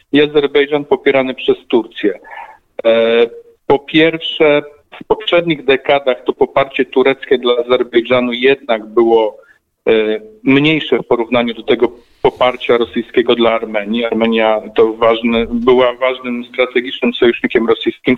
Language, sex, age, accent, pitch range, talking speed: Polish, male, 40-59, native, 120-155 Hz, 110 wpm